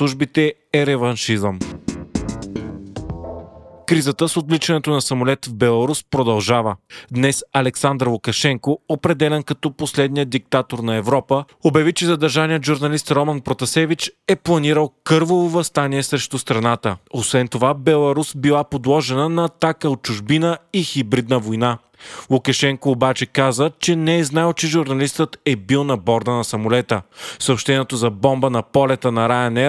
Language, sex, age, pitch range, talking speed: Bulgarian, male, 30-49, 125-155 Hz, 135 wpm